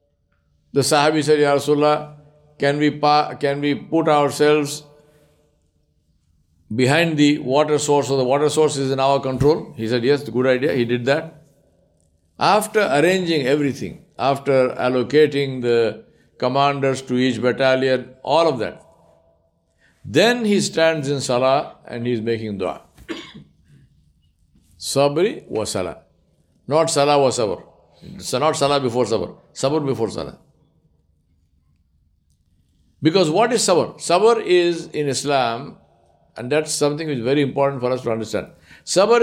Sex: male